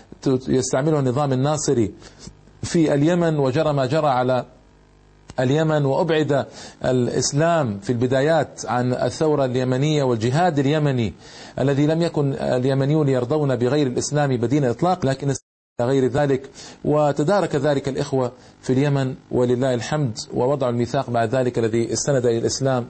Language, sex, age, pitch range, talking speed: Arabic, male, 40-59, 125-155 Hz, 120 wpm